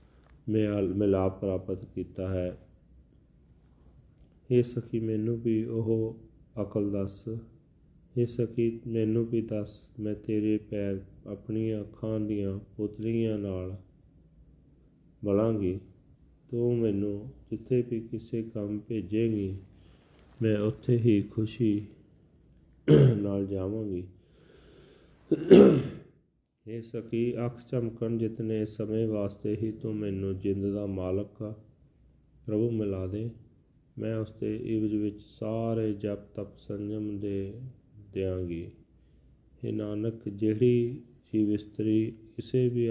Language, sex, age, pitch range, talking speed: Punjabi, male, 40-59, 100-115 Hz, 105 wpm